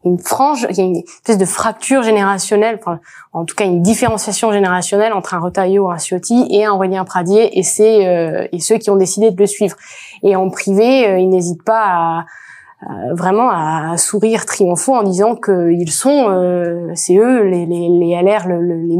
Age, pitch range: 20-39, 180-215 Hz